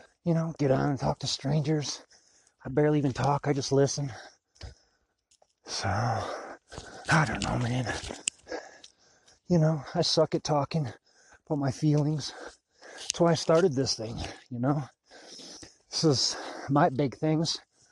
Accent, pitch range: American, 115-145 Hz